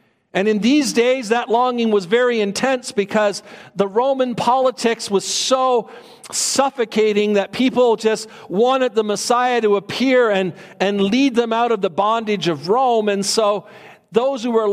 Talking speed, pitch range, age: 160 wpm, 210-255 Hz, 50-69